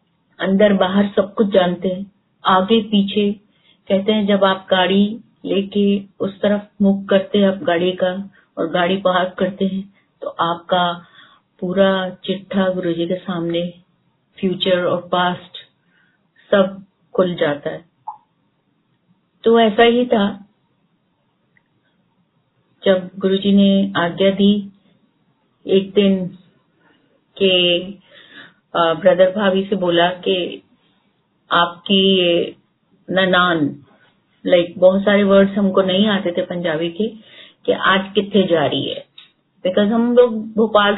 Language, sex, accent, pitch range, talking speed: Hindi, female, native, 180-200 Hz, 110 wpm